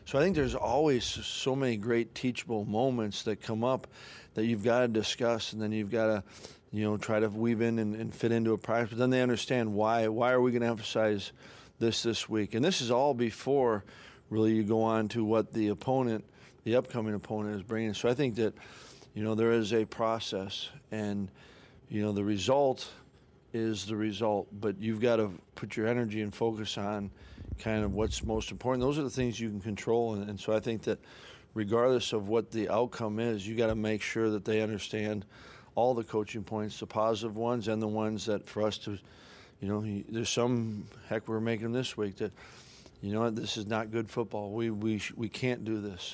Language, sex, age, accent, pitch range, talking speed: English, male, 40-59, American, 105-115 Hz, 210 wpm